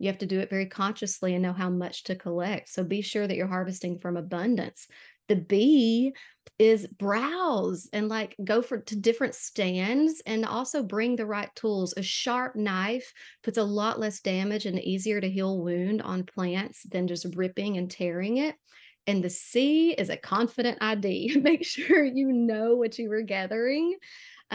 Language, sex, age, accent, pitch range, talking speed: English, female, 30-49, American, 185-225 Hz, 185 wpm